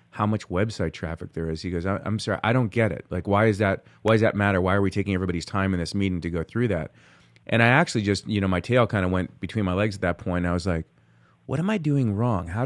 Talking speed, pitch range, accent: 290 wpm, 90-110 Hz, American